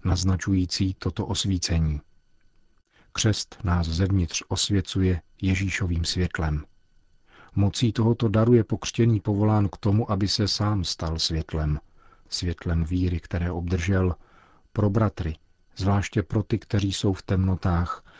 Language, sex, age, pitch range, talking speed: Czech, male, 40-59, 85-100 Hz, 115 wpm